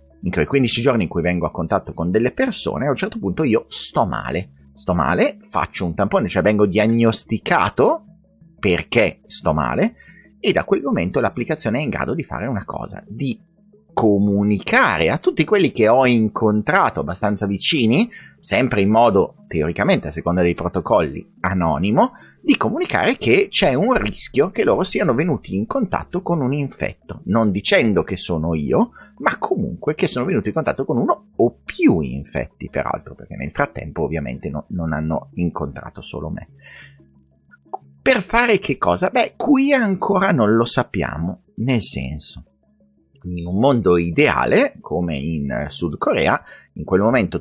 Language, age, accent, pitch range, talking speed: Italian, 30-49, native, 80-125 Hz, 160 wpm